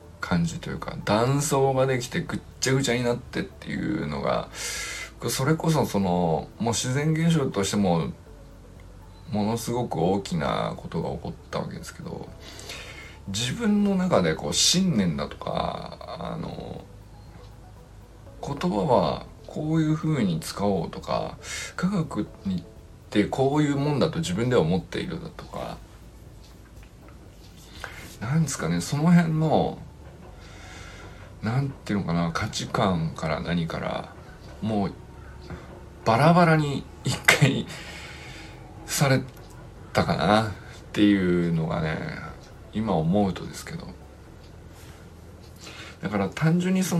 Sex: male